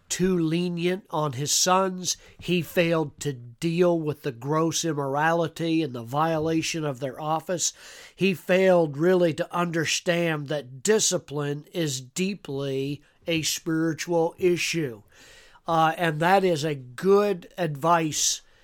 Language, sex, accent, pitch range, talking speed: English, male, American, 145-180 Hz, 120 wpm